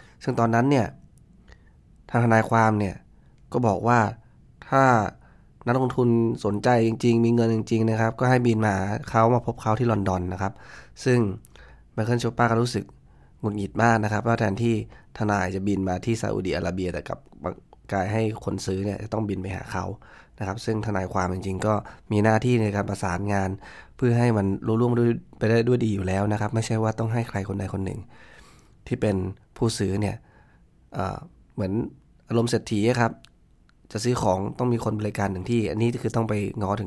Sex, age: male, 20-39